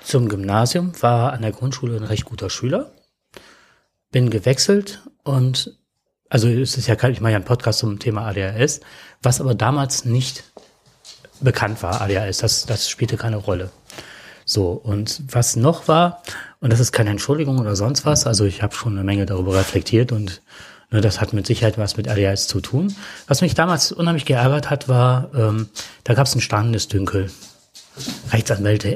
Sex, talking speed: male, 175 wpm